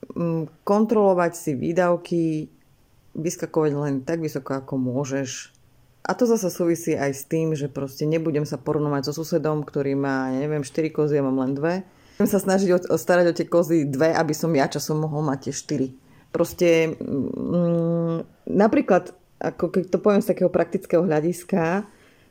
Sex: female